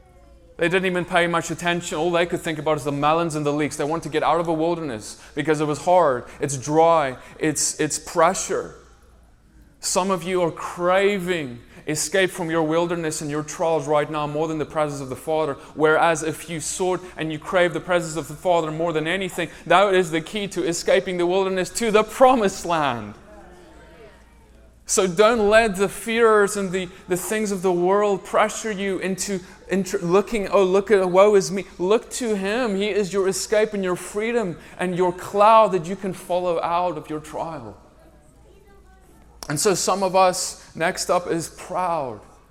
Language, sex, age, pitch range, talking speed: English, male, 20-39, 160-190 Hz, 190 wpm